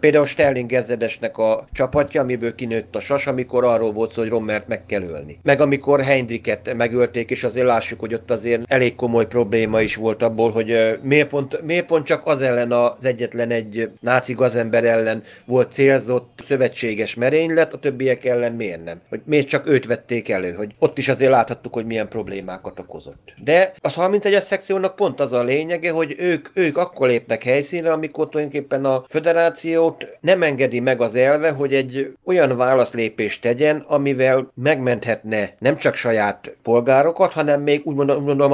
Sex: male